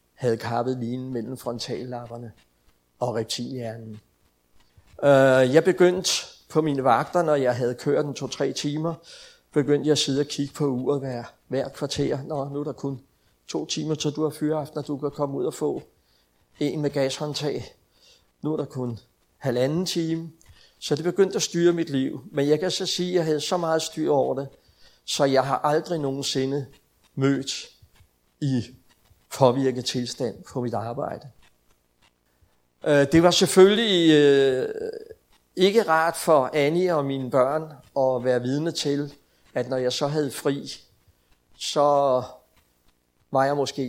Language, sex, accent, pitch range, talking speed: Danish, male, native, 125-155 Hz, 155 wpm